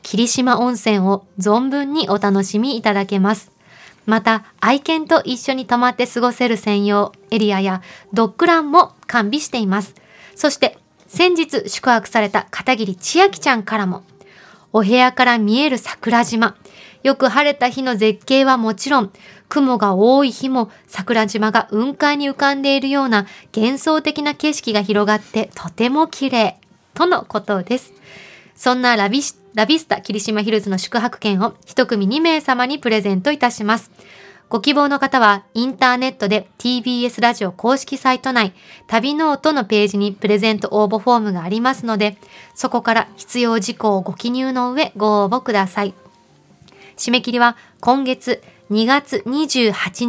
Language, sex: Japanese, female